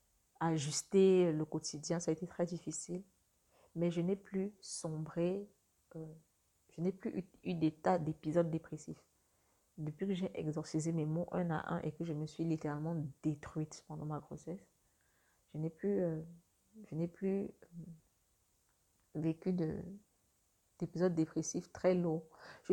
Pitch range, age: 155-180 Hz, 40-59